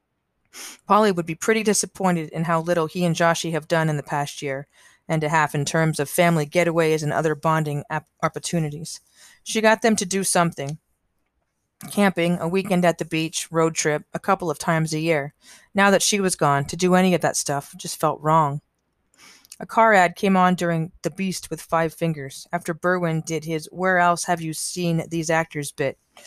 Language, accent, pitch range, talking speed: English, American, 155-185 Hz, 200 wpm